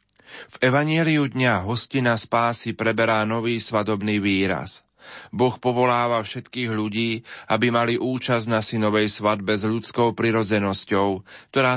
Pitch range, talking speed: 105-125 Hz, 115 wpm